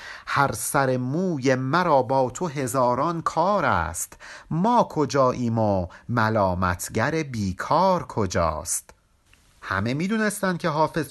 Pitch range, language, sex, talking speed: 115-170 Hz, Persian, male, 115 wpm